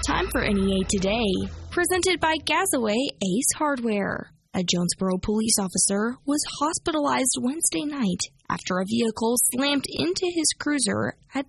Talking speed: 130 wpm